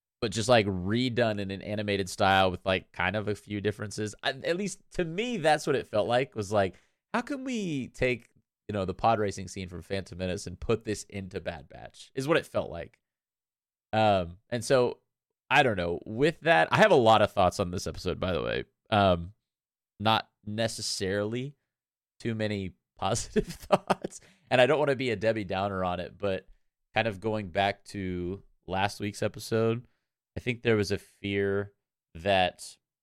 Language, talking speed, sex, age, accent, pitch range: English, 190 wpm, male, 30-49, American, 90-110 Hz